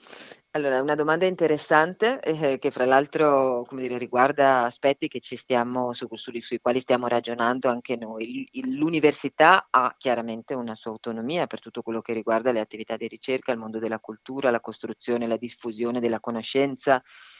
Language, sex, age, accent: Italian, female, 30-49, native